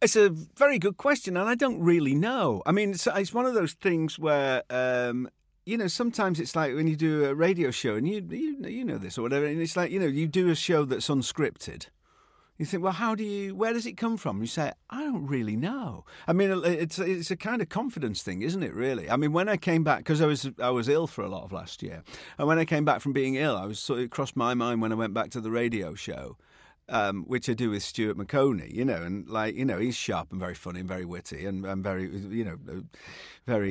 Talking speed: 260 wpm